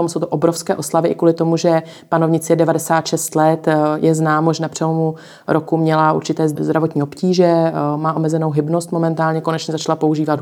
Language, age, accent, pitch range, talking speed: Czech, 30-49, native, 155-165 Hz, 165 wpm